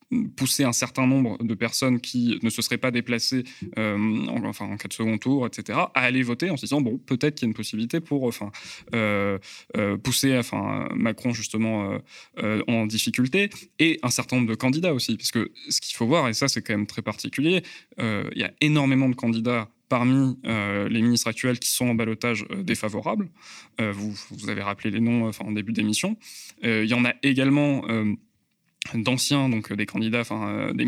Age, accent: 20-39, French